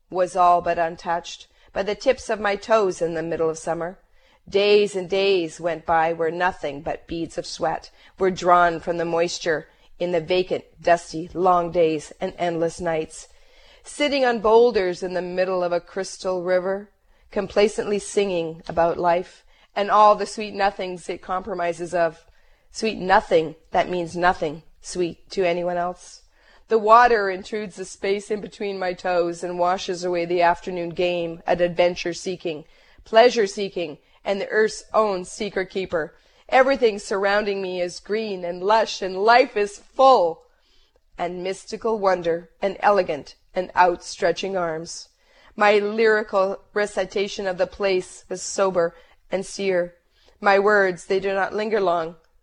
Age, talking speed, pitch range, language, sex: 40-59, 150 wpm, 175-205 Hz, English, female